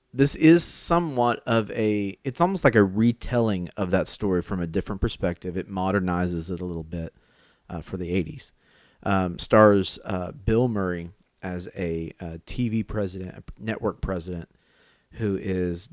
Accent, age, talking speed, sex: American, 30-49, 160 wpm, male